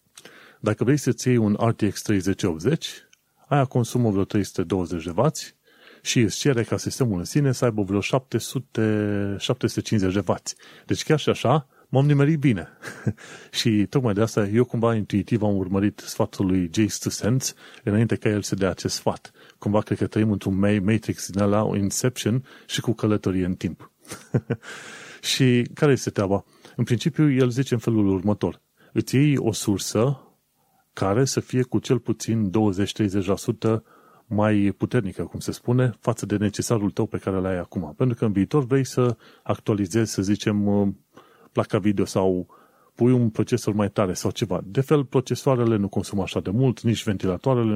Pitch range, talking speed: 100-125 Hz, 165 wpm